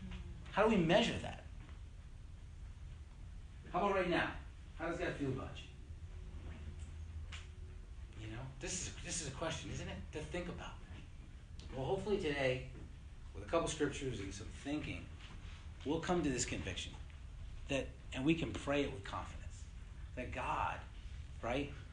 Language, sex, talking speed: English, male, 150 wpm